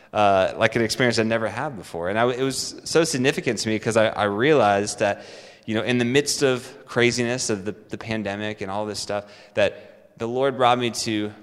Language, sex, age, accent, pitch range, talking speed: English, male, 20-39, American, 105-125 Hz, 220 wpm